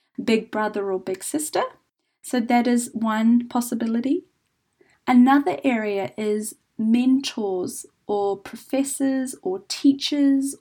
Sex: female